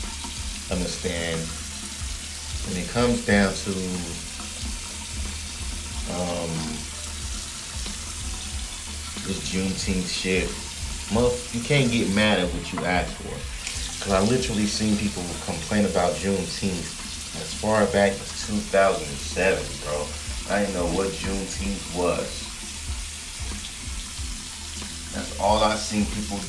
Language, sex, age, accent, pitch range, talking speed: English, male, 30-49, American, 75-105 Hz, 100 wpm